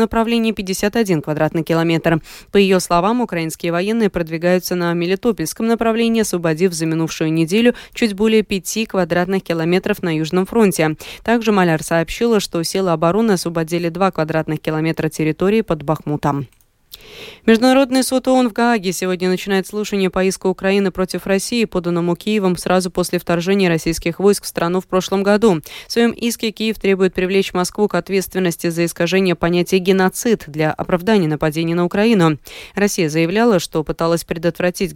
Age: 20-39